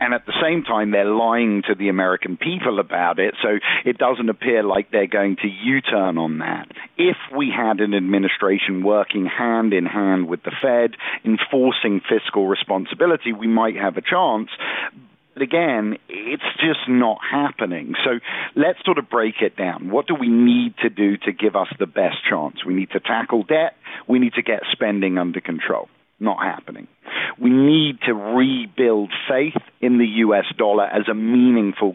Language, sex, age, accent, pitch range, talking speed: English, male, 50-69, British, 100-125 Hz, 180 wpm